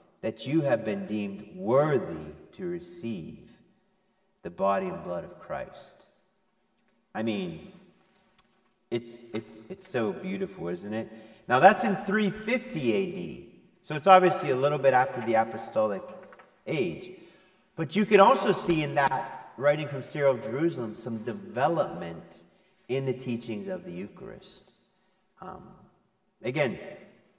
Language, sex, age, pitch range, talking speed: English, male, 40-59, 125-190 Hz, 130 wpm